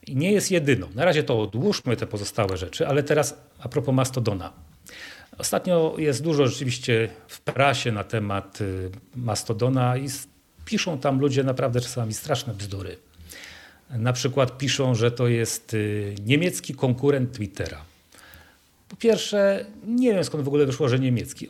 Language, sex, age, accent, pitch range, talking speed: Polish, male, 40-59, native, 115-150 Hz, 145 wpm